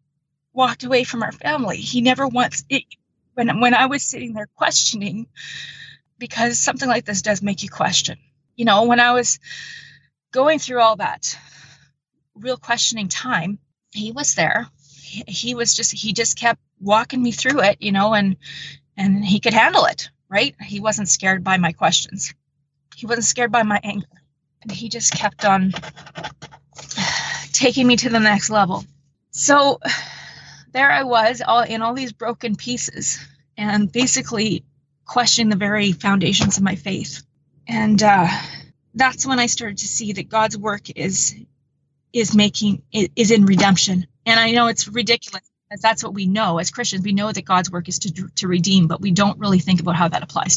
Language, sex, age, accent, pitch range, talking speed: English, female, 30-49, American, 180-235 Hz, 175 wpm